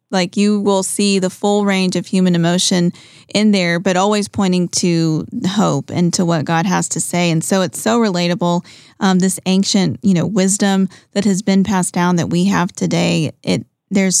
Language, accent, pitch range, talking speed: English, American, 175-205 Hz, 195 wpm